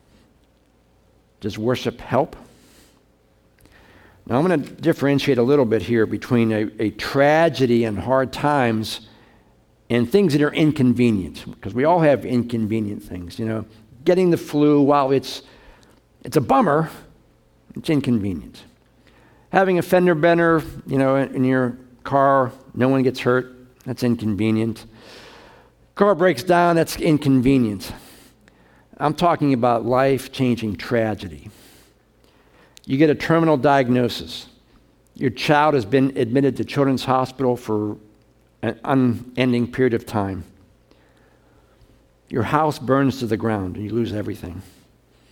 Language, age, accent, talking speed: English, 50-69, American, 125 wpm